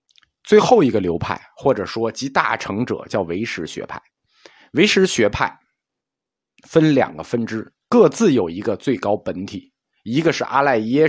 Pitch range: 110-170 Hz